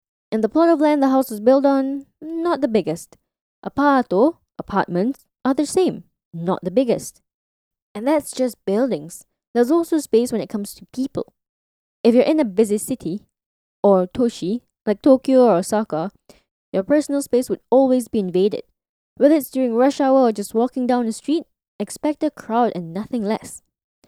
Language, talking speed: English, 170 wpm